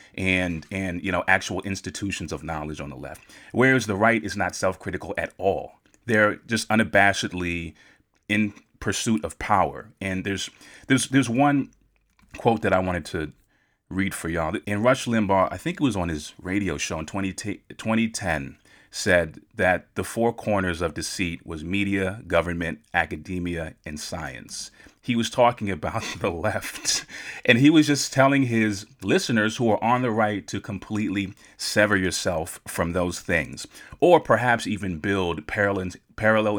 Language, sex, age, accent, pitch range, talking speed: English, male, 30-49, American, 90-110 Hz, 155 wpm